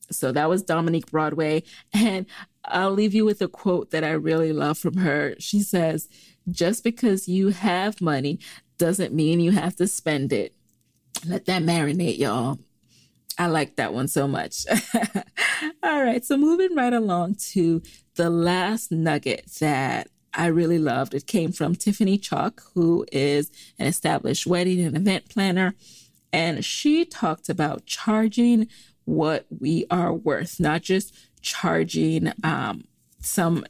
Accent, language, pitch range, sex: American, English, 165-205 Hz, female